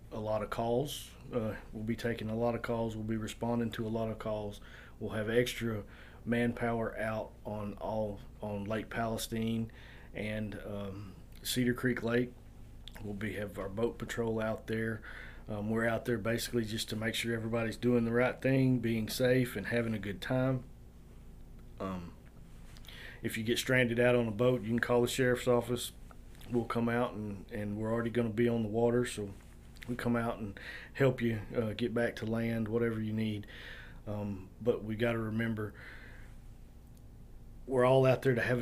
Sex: male